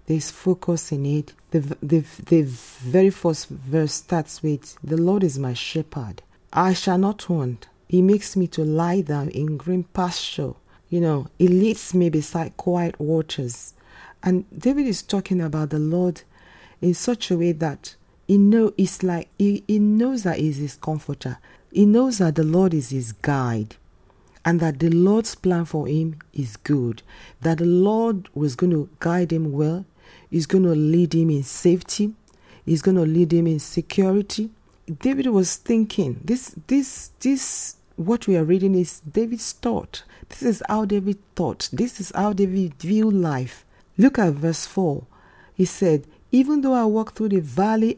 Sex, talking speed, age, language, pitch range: female, 175 wpm, 40-59, English, 145-190 Hz